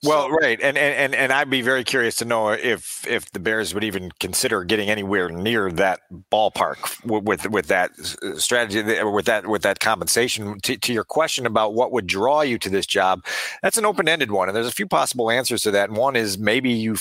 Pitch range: 110-130 Hz